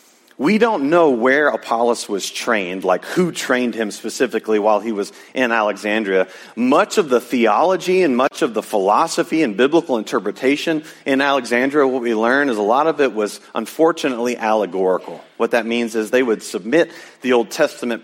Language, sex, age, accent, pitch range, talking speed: English, male, 40-59, American, 110-140 Hz, 175 wpm